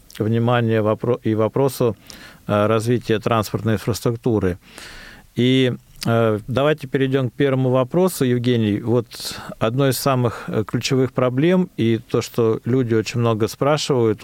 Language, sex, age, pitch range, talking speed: Russian, male, 40-59, 110-135 Hz, 110 wpm